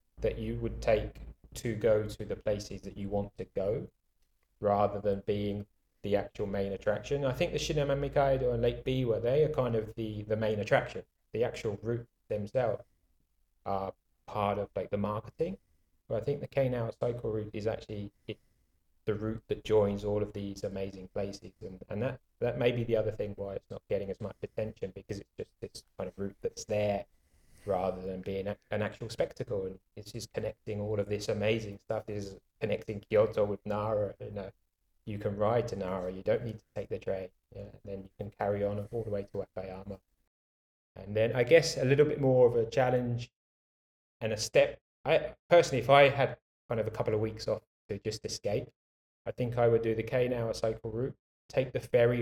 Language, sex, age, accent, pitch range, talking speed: English, male, 30-49, British, 100-115 Hz, 205 wpm